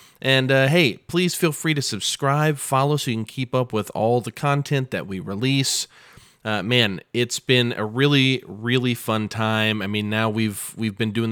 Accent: American